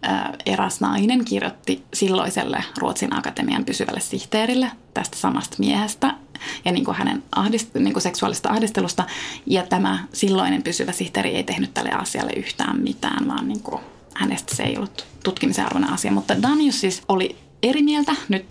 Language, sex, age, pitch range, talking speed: Finnish, female, 20-39, 185-260 Hz, 145 wpm